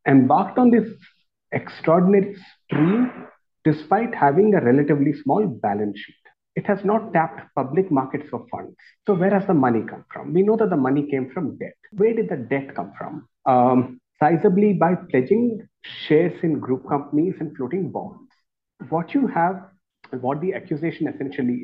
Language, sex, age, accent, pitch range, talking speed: English, male, 50-69, Indian, 140-200 Hz, 165 wpm